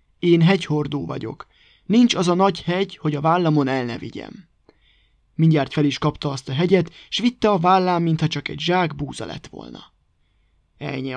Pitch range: 145-175 Hz